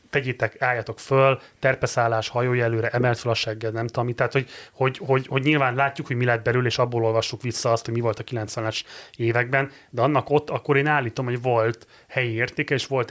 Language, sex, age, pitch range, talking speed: Hungarian, male, 30-49, 115-140 Hz, 215 wpm